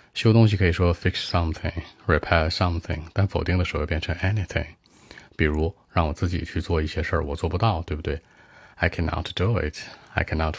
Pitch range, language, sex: 80-95 Hz, Chinese, male